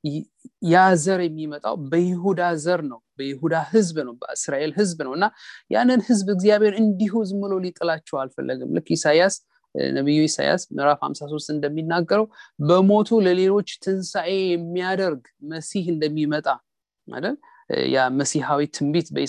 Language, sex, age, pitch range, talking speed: English, male, 30-49, 145-195 Hz, 75 wpm